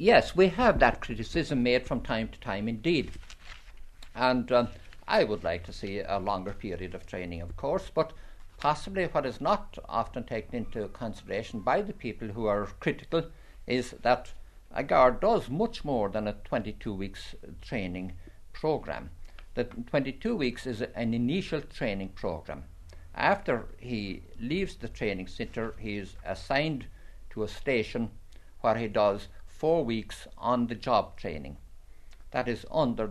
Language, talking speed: English, 150 wpm